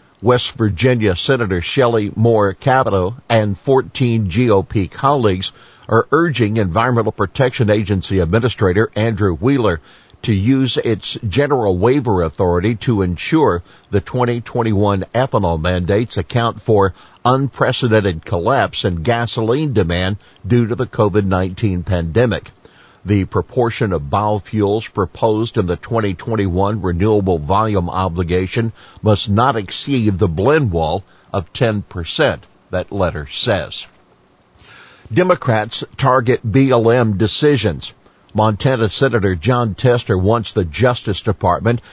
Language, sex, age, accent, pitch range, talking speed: English, male, 50-69, American, 95-120 Hz, 115 wpm